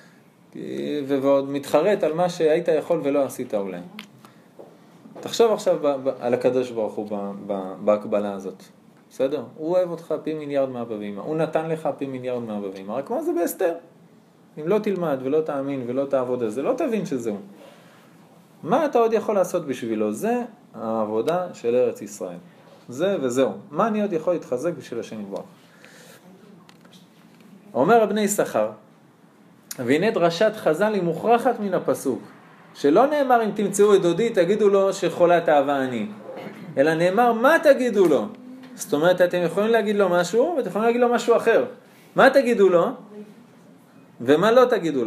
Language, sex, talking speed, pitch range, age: Hebrew, male, 155 wpm, 140-215 Hz, 20-39